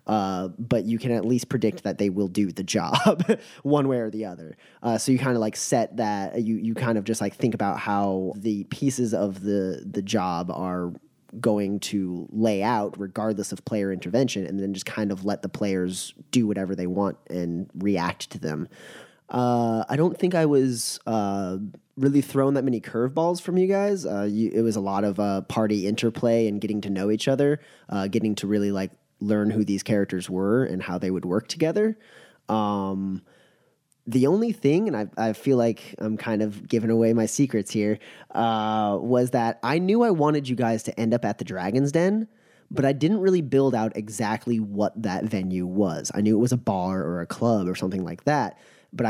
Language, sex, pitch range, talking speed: English, male, 100-130 Hz, 210 wpm